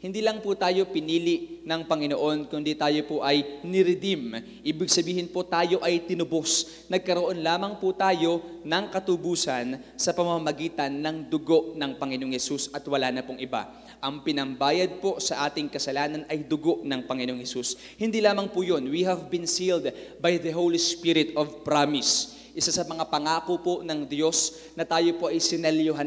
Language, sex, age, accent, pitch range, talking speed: English, male, 20-39, Filipino, 155-190 Hz, 165 wpm